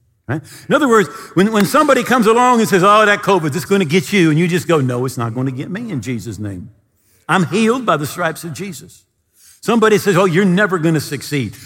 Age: 50-69